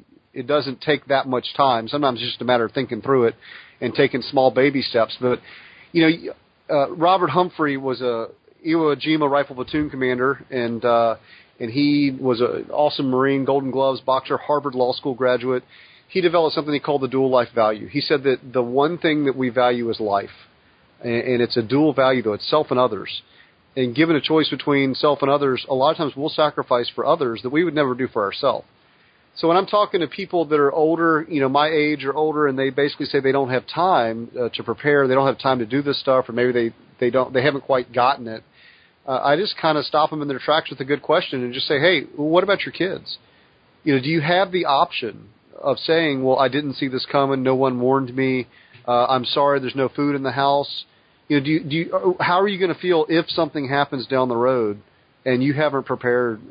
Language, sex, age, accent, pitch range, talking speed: English, male, 40-59, American, 125-150 Hz, 230 wpm